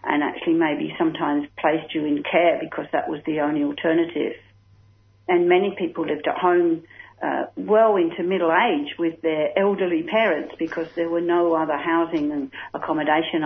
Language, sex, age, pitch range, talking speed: English, female, 50-69, 155-200 Hz, 165 wpm